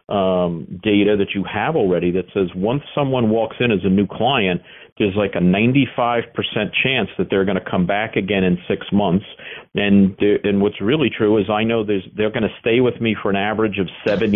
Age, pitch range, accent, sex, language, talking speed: 50-69, 95-115 Hz, American, male, English, 200 wpm